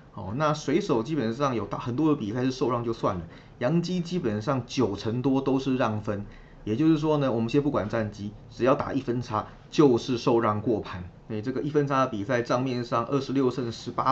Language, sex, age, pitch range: Chinese, male, 20-39, 110-135 Hz